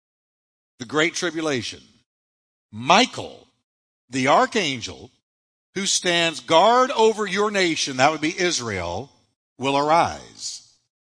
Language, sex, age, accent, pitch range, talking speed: English, male, 60-79, American, 130-200 Hz, 95 wpm